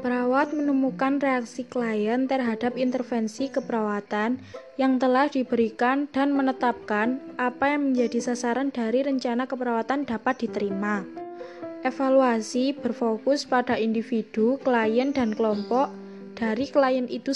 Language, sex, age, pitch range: Indonesian, female, 20-39, 230-265 Hz